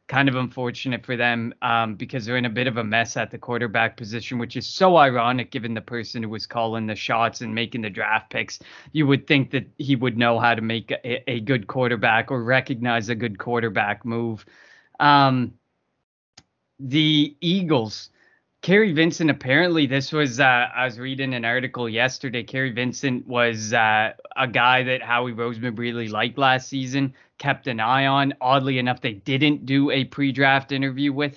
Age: 20-39